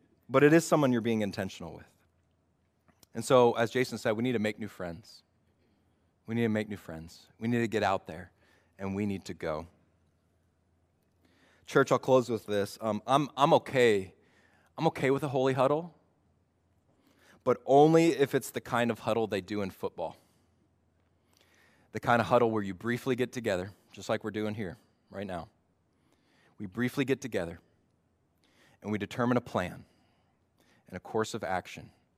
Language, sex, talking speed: English, male, 175 wpm